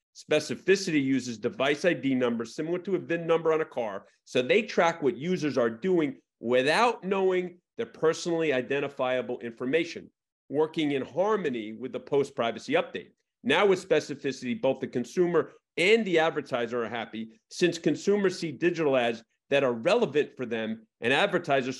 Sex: male